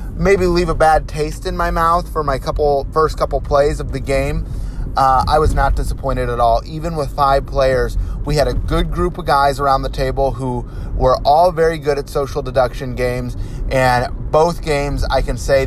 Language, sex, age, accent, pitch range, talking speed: English, male, 30-49, American, 125-150 Hz, 205 wpm